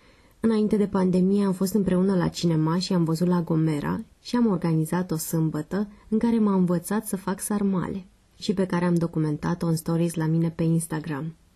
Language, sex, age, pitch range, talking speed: Romanian, female, 20-39, 165-190 Hz, 190 wpm